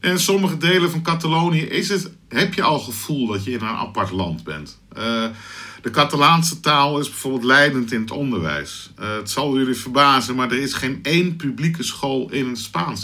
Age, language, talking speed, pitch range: 50-69, Dutch, 190 wpm, 115-145 Hz